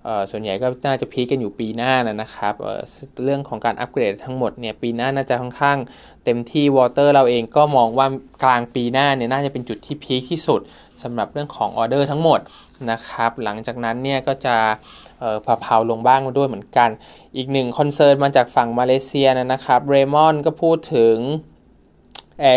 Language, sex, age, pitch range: Thai, male, 20-39, 120-140 Hz